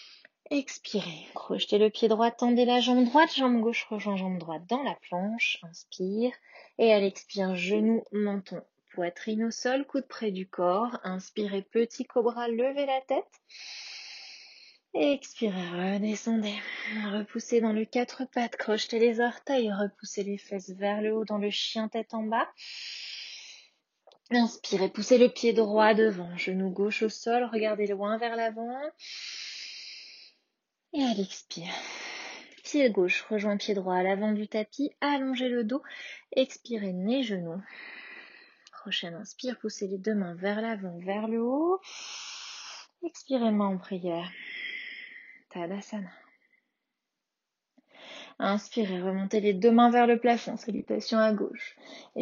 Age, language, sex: 20-39, French, female